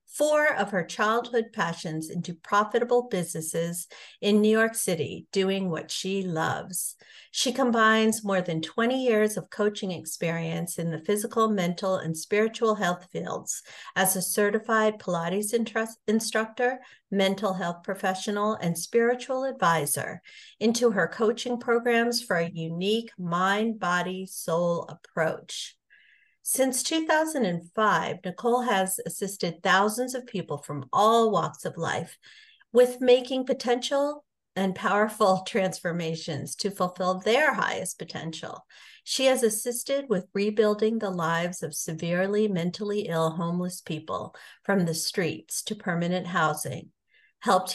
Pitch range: 175-225 Hz